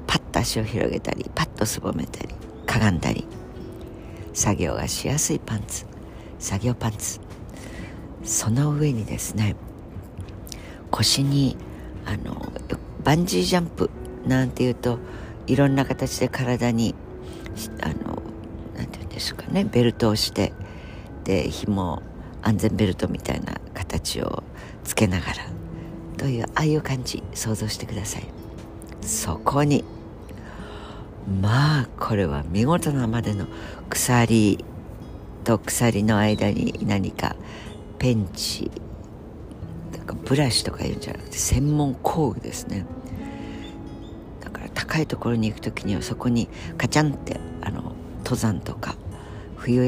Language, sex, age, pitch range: Japanese, female, 60-79, 95-120 Hz